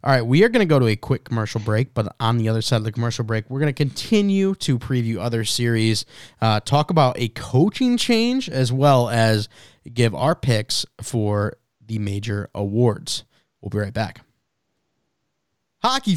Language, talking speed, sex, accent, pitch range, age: English, 185 wpm, male, American, 120-185 Hz, 20-39